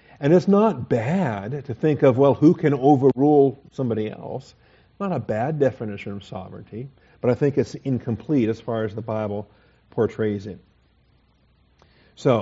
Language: English